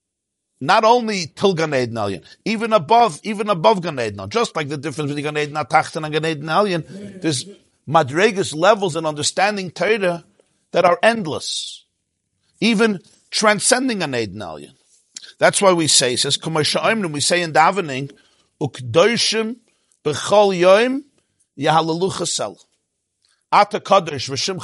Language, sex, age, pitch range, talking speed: English, male, 50-69, 140-190 Hz, 100 wpm